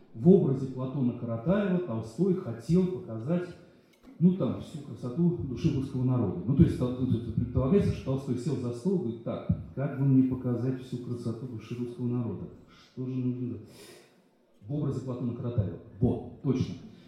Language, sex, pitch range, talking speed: Russian, male, 125-160 Hz, 160 wpm